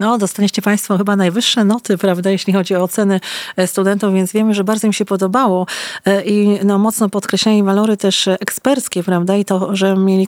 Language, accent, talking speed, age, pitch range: Polish, native, 180 wpm, 40-59, 185-210 Hz